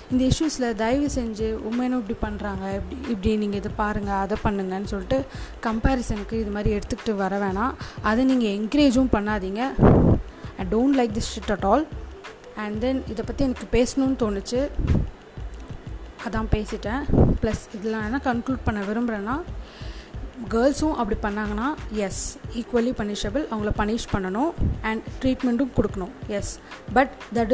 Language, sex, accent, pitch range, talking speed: Tamil, female, native, 210-255 Hz, 135 wpm